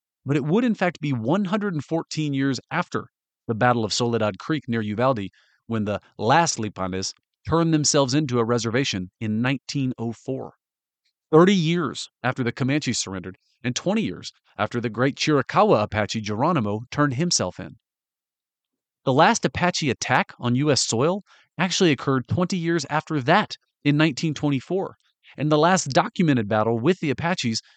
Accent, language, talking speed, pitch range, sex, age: American, English, 145 wpm, 115-160 Hz, male, 40-59